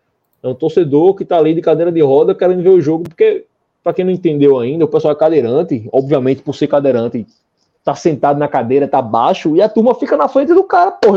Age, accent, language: 20-39, Brazilian, Portuguese